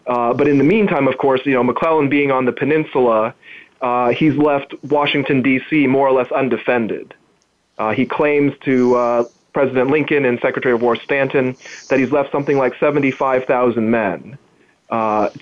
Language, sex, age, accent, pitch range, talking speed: English, male, 30-49, American, 120-140 Hz, 165 wpm